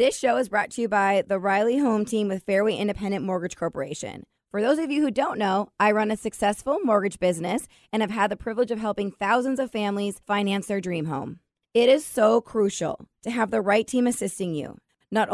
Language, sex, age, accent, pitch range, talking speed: English, female, 20-39, American, 175-225 Hz, 215 wpm